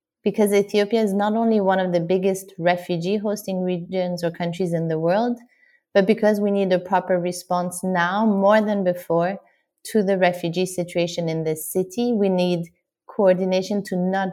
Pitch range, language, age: 175-200 Hz, English, 30-49